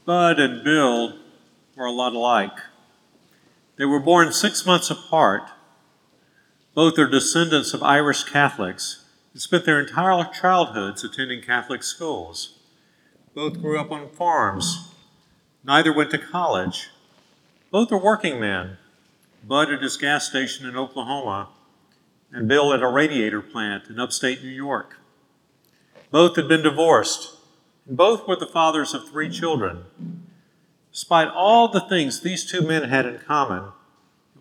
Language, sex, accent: English, male, American